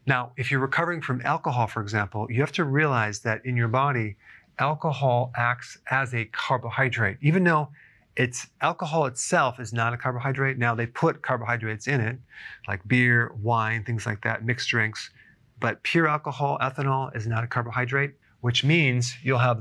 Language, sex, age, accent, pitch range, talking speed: English, male, 40-59, American, 115-135 Hz, 170 wpm